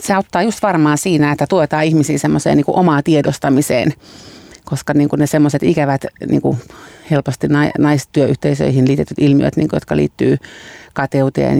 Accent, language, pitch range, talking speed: native, Finnish, 135-165 Hz, 155 wpm